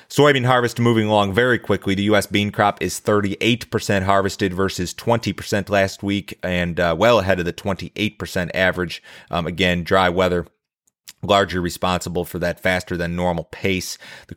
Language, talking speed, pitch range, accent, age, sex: English, 160 wpm, 90-105 Hz, American, 30-49, male